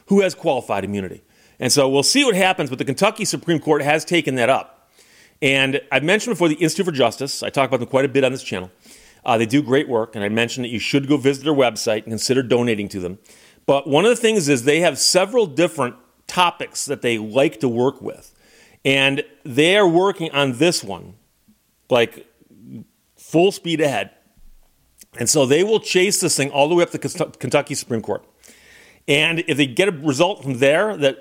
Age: 40-59